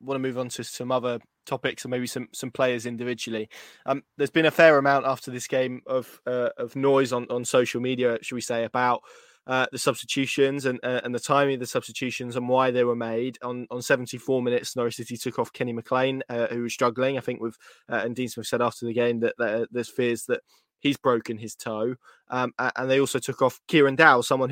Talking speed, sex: 235 wpm, male